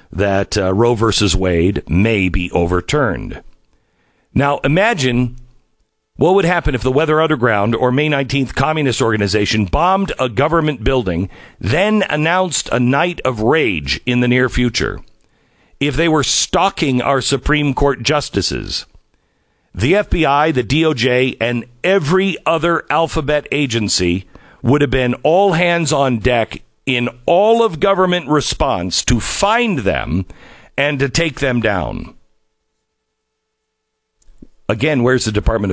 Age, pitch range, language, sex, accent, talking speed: 50-69, 105-145 Hz, English, male, American, 130 wpm